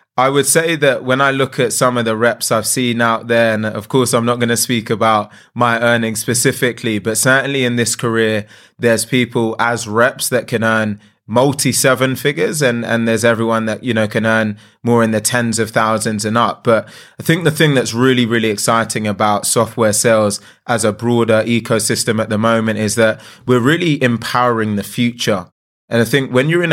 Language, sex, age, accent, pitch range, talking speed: English, male, 20-39, British, 110-125 Hz, 205 wpm